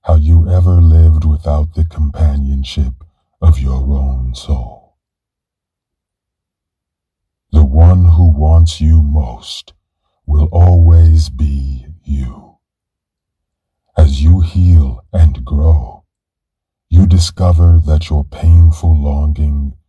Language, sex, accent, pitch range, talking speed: English, male, American, 75-85 Hz, 95 wpm